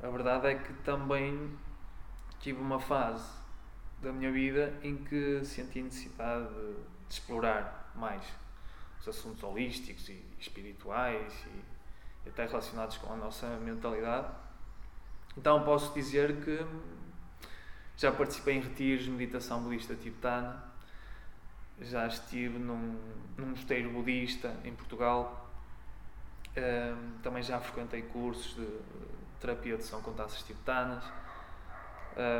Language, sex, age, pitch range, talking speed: Portuguese, male, 20-39, 110-135 Hz, 110 wpm